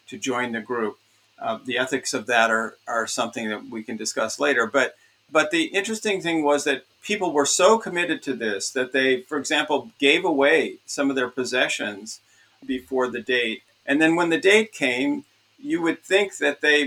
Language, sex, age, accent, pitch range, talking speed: English, male, 50-69, American, 125-165 Hz, 190 wpm